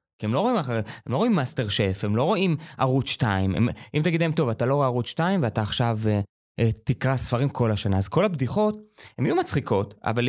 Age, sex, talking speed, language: 20-39, male, 220 wpm, Hebrew